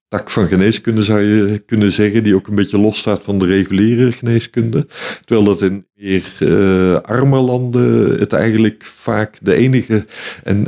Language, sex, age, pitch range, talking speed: Dutch, male, 50-69, 100-115 Hz, 170 wpm